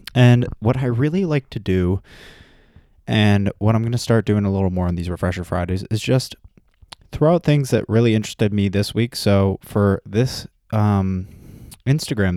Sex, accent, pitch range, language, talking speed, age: male, American, 90-105 Hz, English, 180 wpm, 20-39